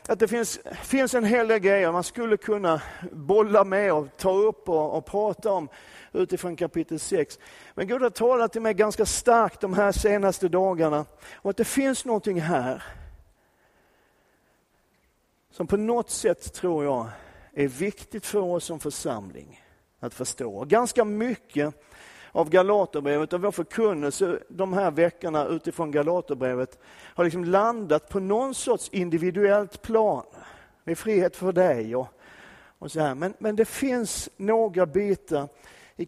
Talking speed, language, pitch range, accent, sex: 150 wpm, Swedish, 160-215 Hz, native, male